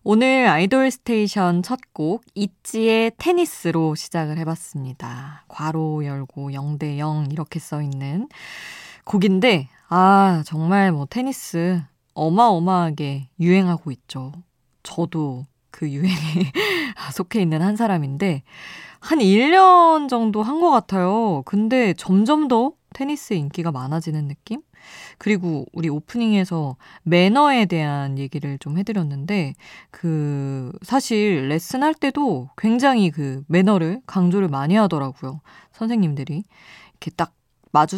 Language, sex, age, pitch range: Korean, female, 20-39, 150-215 Hz